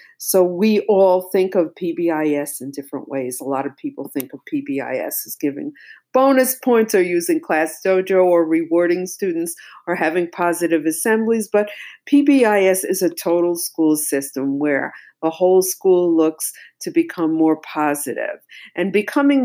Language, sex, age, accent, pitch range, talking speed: English, female, 50-69, American, 155-205 Hz, 150 wpm